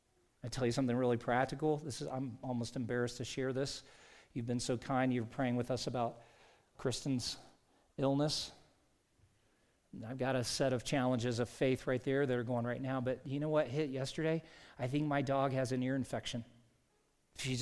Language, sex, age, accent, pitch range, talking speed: English, male, 40-59, American, 125-150 Hz, 185 wpm